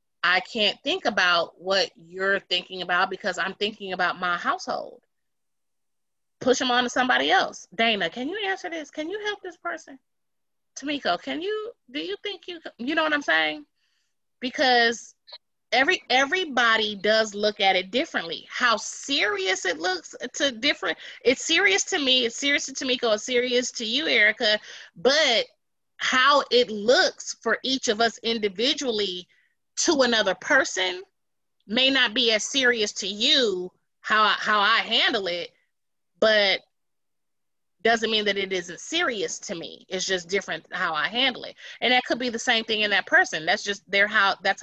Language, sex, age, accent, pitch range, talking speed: English, female, 30-49, American, 200-275 Hz, 165 wpm